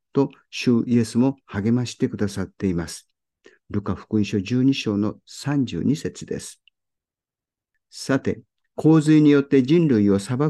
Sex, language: male, Japanese